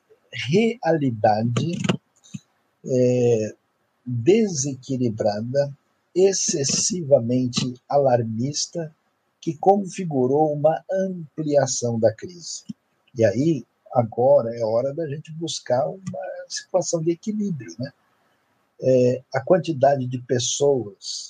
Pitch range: 115-155 Hz